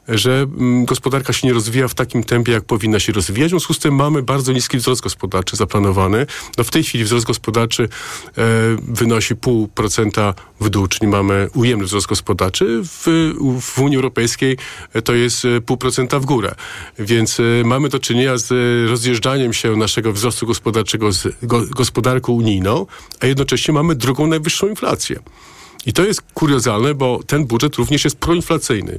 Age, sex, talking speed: 50-69, male, 155 wpm